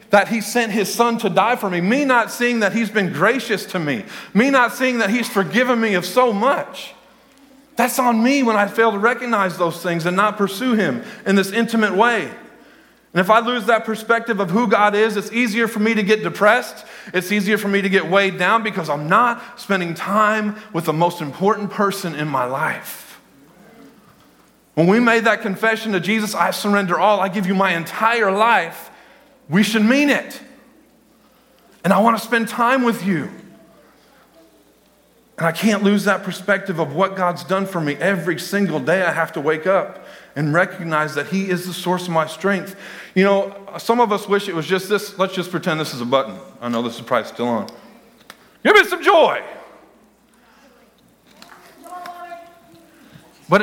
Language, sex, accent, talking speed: English, male, American, 190 wpm